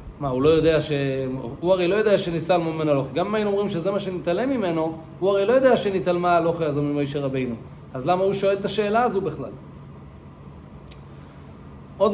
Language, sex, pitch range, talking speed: English, male, 135-200 Hz, 180 wpm